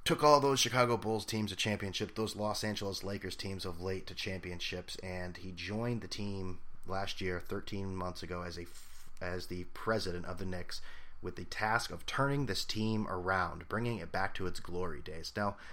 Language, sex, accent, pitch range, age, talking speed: English, male, American, 85-110 Hz, 30-49, 195 wpm